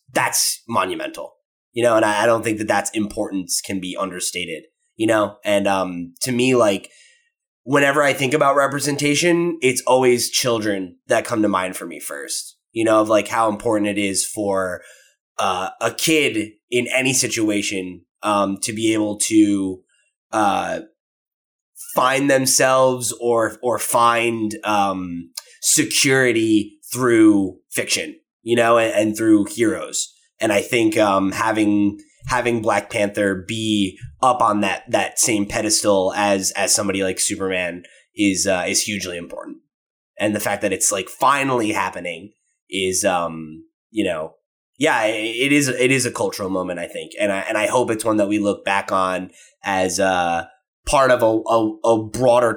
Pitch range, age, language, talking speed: 100-125 Hz, 20-39, English, 160 wpm